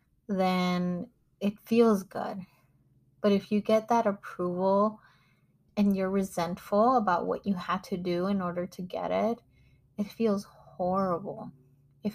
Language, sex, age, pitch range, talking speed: English, female, 20-39, 175-210 Hz, 140 wpm